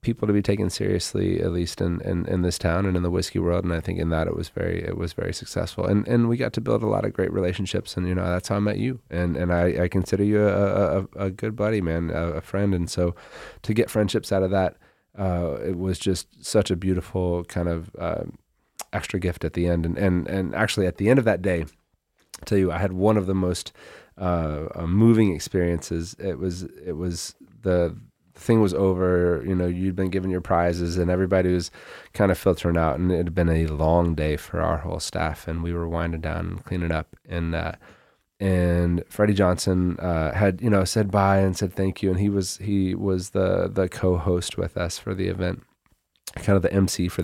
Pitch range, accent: 85-100 Hz, American